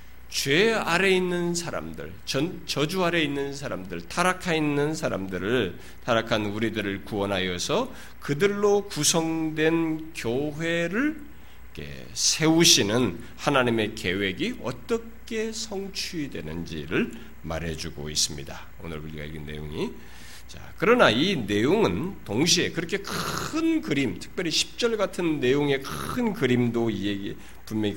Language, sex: Korean, male